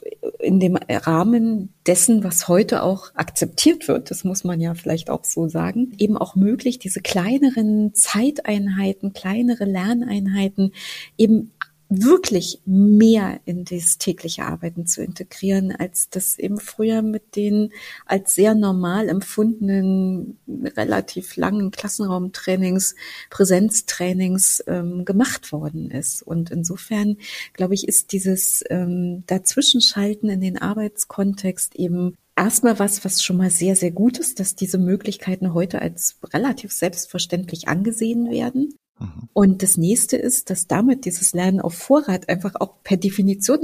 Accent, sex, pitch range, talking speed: German, female, 180-215 Hz, 130 wpm